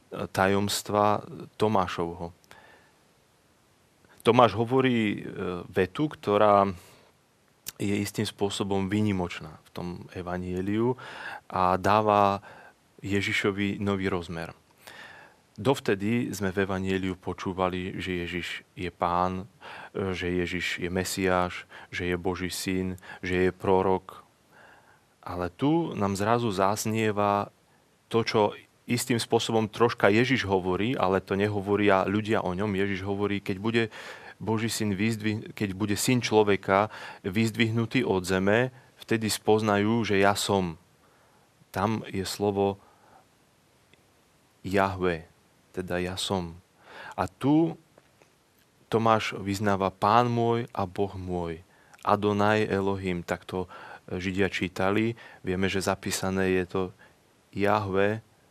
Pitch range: 95-110 Hz